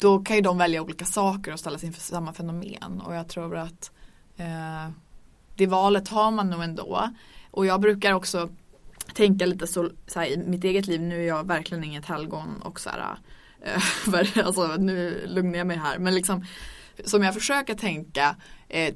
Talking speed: 185 wpm